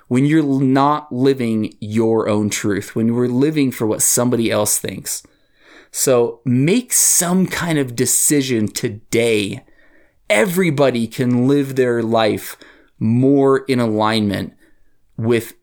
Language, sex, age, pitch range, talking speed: English, male, 20-39, 110-140 Hz, 120 wpm